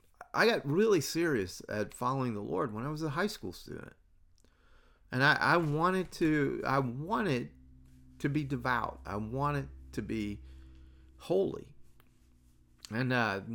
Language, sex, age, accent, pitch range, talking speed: English, male, 40-59, American, 95-135 Hz, 140 wpm